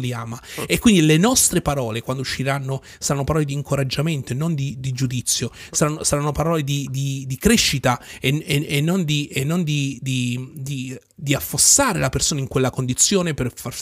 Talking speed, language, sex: 155 wpm, Italian, male